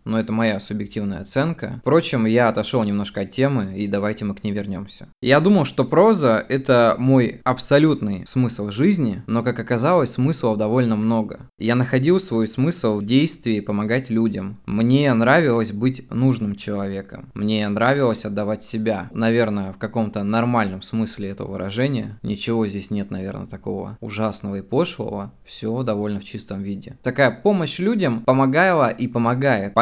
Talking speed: 155 wpm